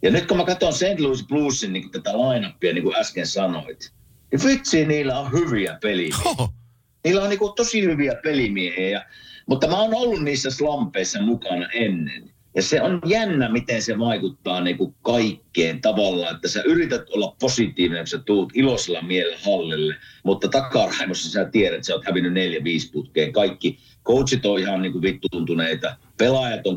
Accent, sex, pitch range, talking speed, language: native, male, 95-155 Hz, 170 wpm, Finnish